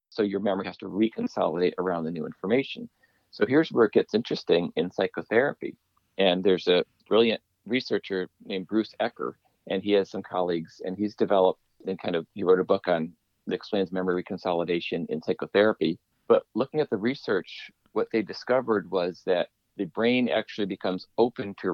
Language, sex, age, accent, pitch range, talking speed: English, male, 40-59, American, 95-115 Hz, 175 wpm